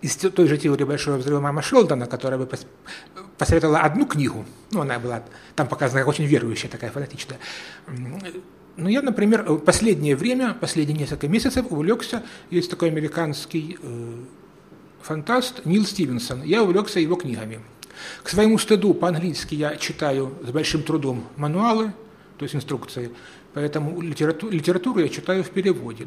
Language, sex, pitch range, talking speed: Ukrainian, male, 140-180 Hz, 145 wpm